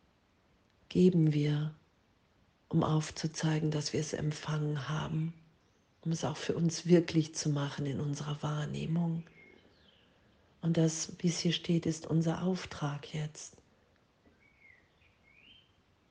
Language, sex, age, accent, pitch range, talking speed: German, female, 50-69, German, 150-165 Hz, 110 wpm